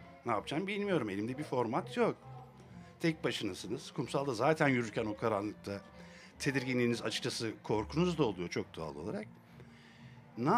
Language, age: English, 60-79